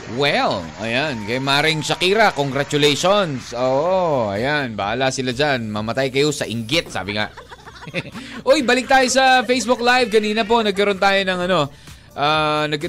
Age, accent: 20-39, native